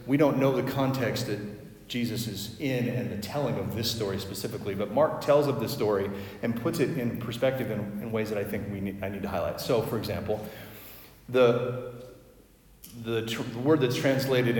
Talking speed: 200 wpm